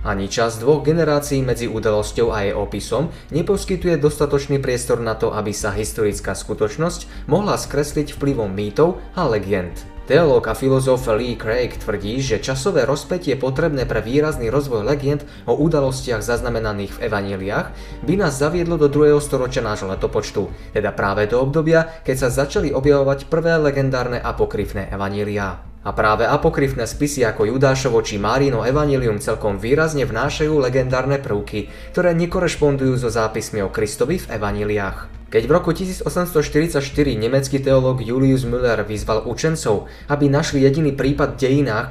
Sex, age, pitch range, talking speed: male, 20-39, 110-145 Hz, 145 wpm